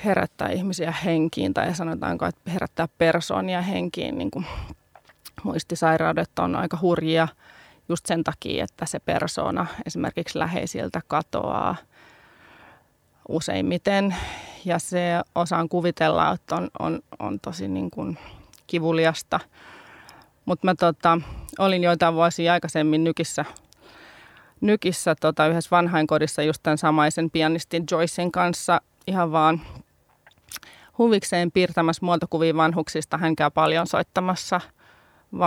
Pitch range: 155-175 Hz